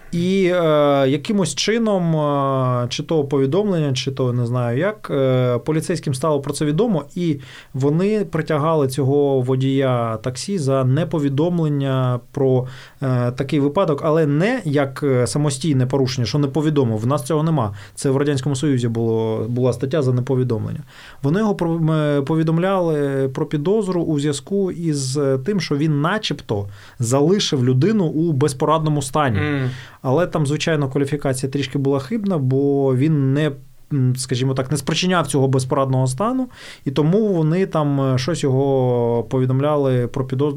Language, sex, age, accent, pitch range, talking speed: Ukrainian, male, 20-39, native, 135-165 Hz, 140 wpm